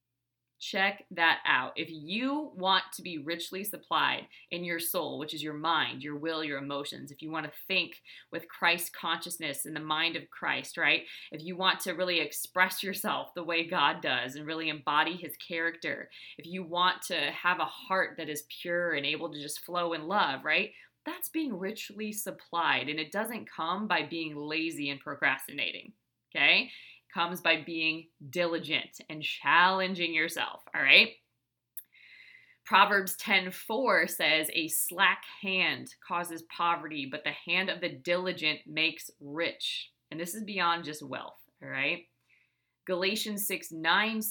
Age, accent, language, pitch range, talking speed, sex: 20-39, American, English, 155-185 Hz, 160 wpm, female